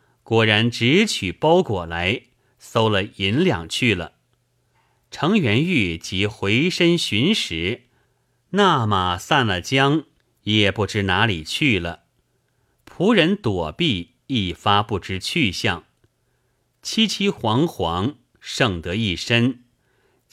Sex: male